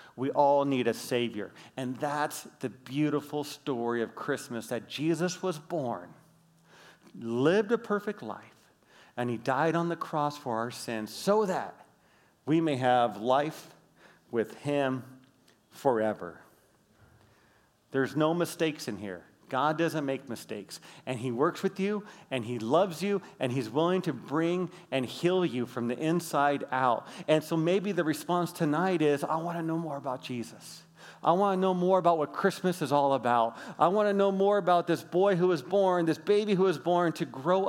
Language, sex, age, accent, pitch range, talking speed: English, male, 40-59, American, 130-175 Hz, 175 wpm